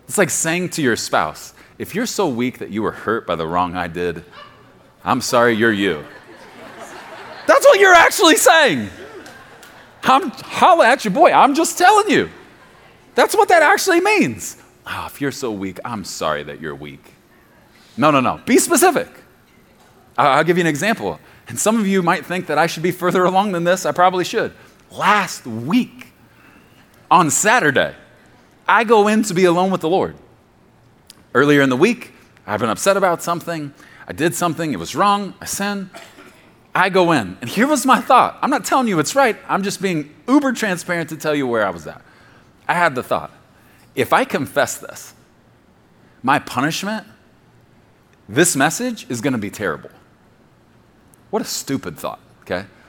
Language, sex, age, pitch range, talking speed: English, male, 30-49, 150-225 Hz, 175 wpm